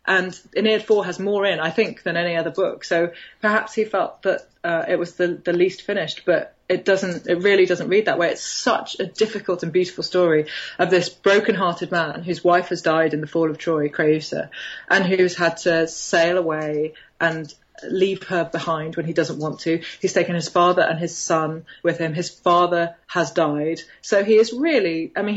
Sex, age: female, 30-49